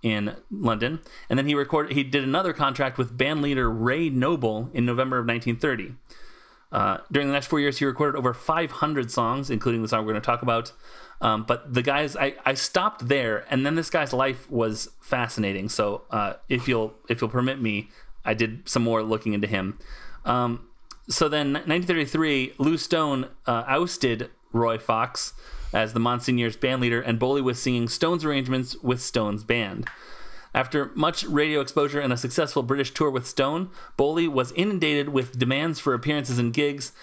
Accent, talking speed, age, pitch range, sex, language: American, 180 wpm, 30-49, 115-145 Hz, male, English